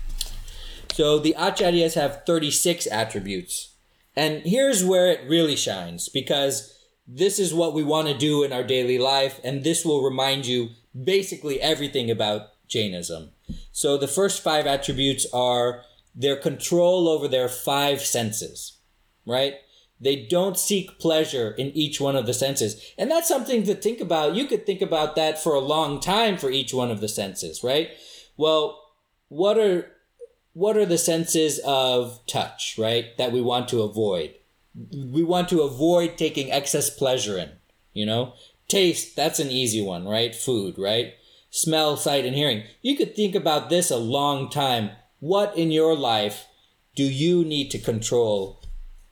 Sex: male